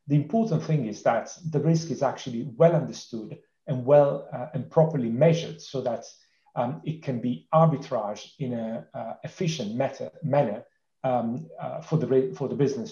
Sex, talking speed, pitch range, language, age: male, 170 wpm, 115-150 Hz, English, 40-59